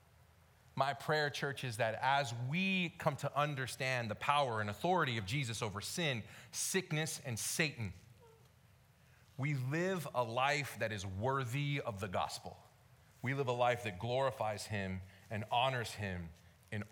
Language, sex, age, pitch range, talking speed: English, male, 30-49, 110-155 Hz, 150 wpm